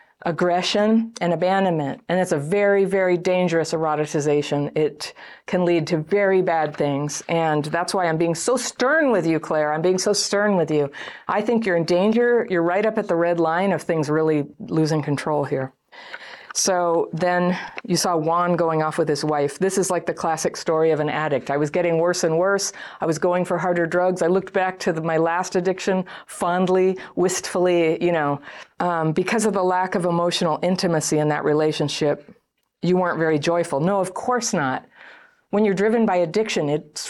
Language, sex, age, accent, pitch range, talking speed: English, female, 50-69, American, 160-195 Hz, 190 wpm